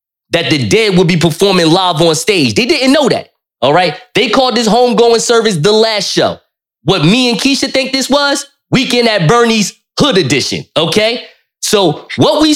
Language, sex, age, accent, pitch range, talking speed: English, male, 20-39, American, 150-220 Hz, 185 wpm